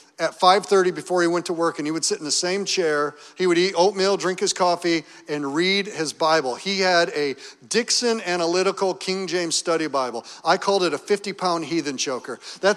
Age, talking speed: 40-59, 200 wpm